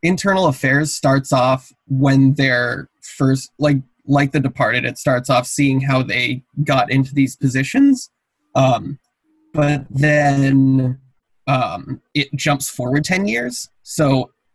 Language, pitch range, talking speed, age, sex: English, 130-150 Hz, 130 wpm, 20-39, male